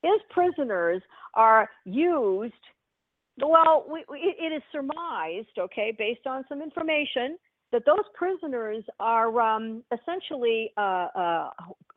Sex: female